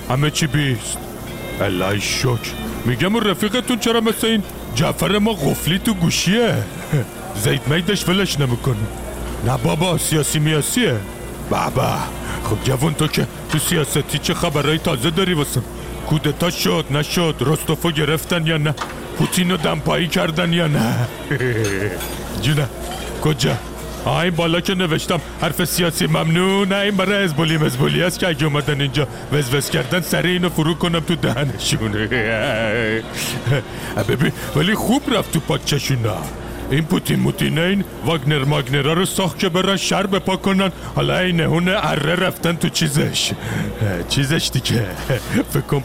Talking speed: 140 wpm